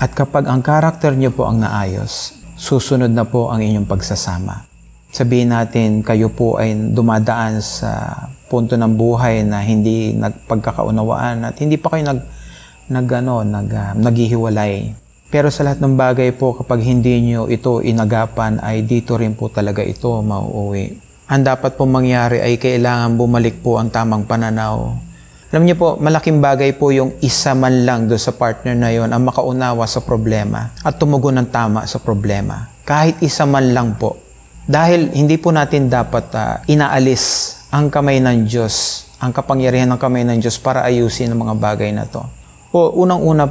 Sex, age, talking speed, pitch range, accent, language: male, 30-49, 165 wpm, 110-135 Hz, native, Filipino